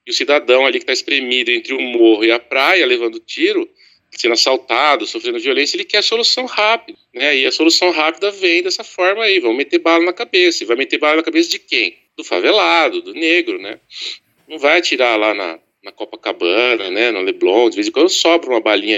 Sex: male